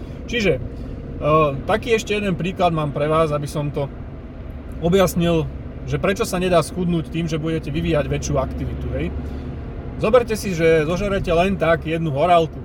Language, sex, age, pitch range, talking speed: Slovak, male, 30-49, 145-175 Hz, 150 wpm